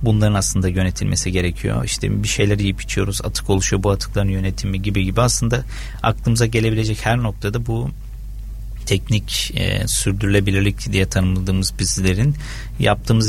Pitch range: 95-110 Hz